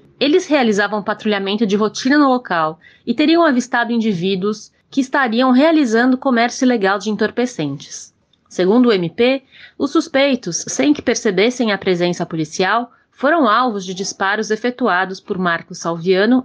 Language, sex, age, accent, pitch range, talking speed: Portuguese, female, 30-49, Brazilian, 195-250 Hz, 135 wpm